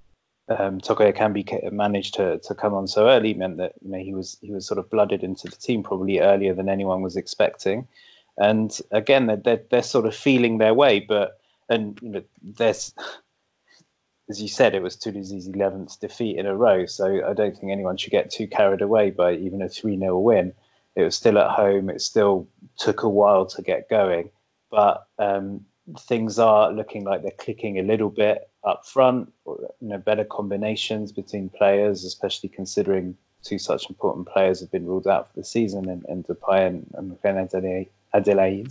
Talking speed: 190 wpm